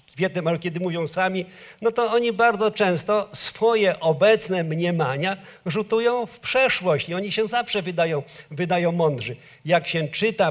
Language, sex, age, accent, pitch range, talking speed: Polish, male, 50-69, native, 160-200 Hz, 145 wpm